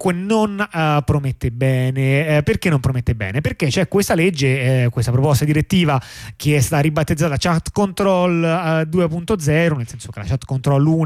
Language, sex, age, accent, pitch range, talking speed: Italian, male, 30-49, native, 125-155 Hz, 175 wpm